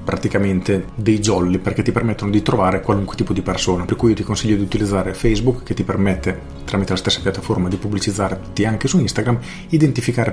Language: Italian